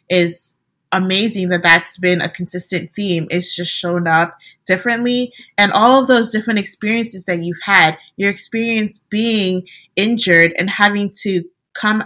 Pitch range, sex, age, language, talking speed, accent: 170-195 Hz, female, 20-39, English, 150 wpm, American